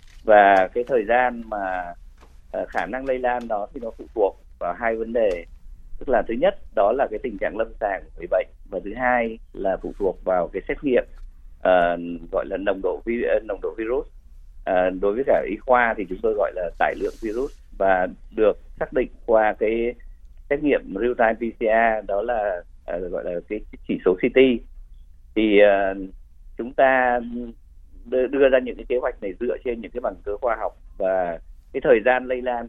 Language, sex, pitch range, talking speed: Vietnamese, male, 80-125 Hz, 185 wpm